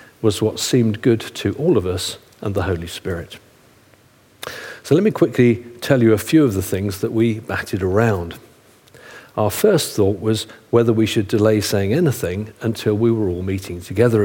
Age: 50-69